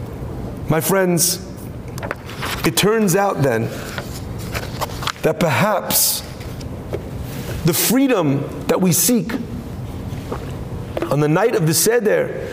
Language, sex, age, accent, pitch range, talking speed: English, male, 40-59, American, 160-210 Hz, 90 wpm